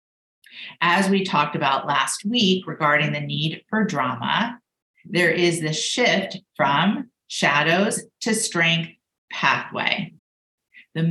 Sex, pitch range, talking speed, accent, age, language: female, 155-200 Hz, 115 wpm, American, 40-59, English